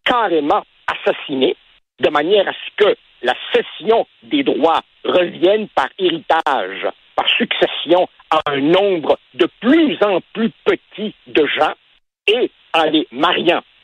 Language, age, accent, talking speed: French, 60-79, French, 130 wpm